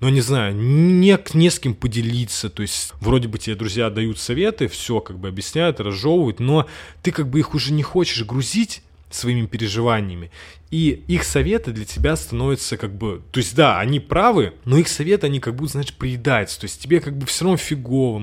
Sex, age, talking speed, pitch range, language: male, 20-39, 200 wpm, 105-145 Hz, Russian